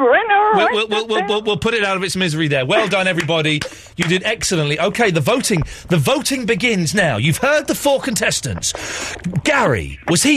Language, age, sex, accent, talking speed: English, 40-59, male, British, 190 wpm